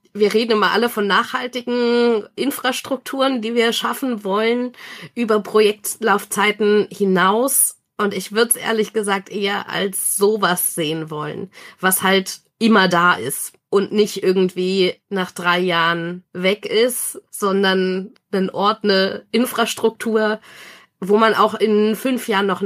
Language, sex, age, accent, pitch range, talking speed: German, female, 20-39, German, 195-225 Hz, 130 wpm